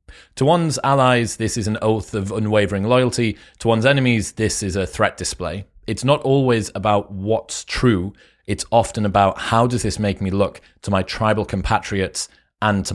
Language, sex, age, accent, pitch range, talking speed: English, male, 30-49, British, 95-115 Hz, 180 wpm